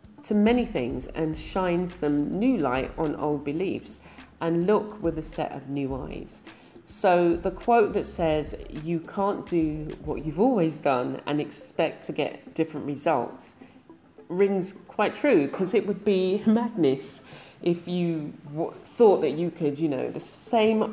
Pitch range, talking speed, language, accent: 145-180 Hz, 160 wpm, English, British